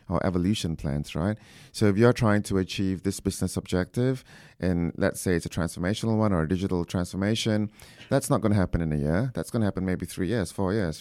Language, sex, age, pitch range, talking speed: English, male, 30-49, 85-110 Hz, 225 wpm